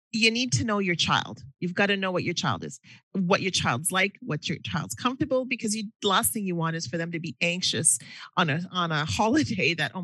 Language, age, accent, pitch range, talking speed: English, 40-59, American, 150-190 Hz, 240 wpm